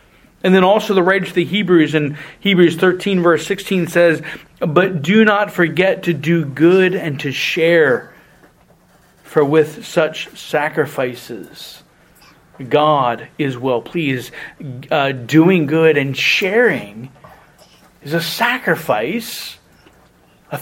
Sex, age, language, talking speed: male, 40-59, English, 120 wpm